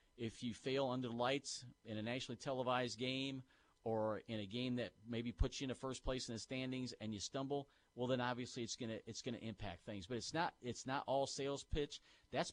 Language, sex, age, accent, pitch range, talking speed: English, male, 40-59, American, 105-125 Hz, 235 wpm